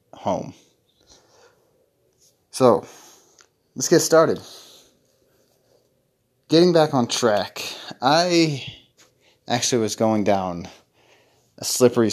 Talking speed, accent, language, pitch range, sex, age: 80 wpm, American, English, 100-125 Hz, male, 20-39